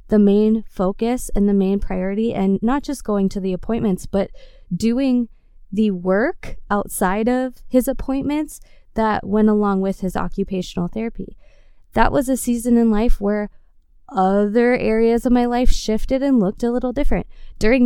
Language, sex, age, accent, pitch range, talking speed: English, female, 20-39, American, 195-245 Hz, 160 wpm